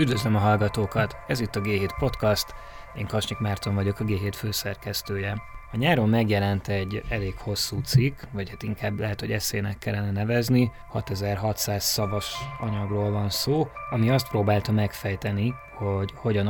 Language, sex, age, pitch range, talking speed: Hungarian, male, 20-39, 100-115 Hz, 150 wpm